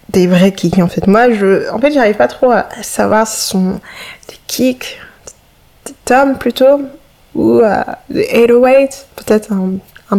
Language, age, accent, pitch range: French, 20-39, French, 185-230 Hz